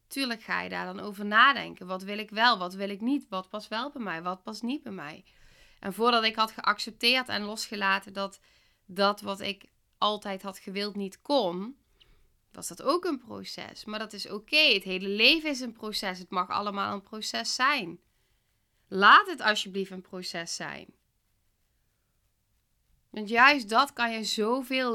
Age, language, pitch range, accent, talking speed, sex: 20-39, Dutch, 190-245 Hz, Dutch, 180 wpm, female